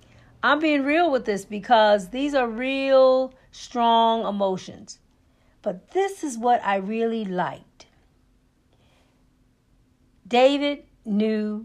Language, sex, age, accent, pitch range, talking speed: English, female, 50-69, American, 180-255 Hz, 105 wpm